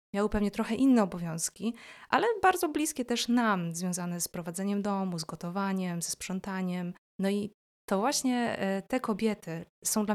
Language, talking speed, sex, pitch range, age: Polish, 155 wpm, female, 175-210 Hz, 20-39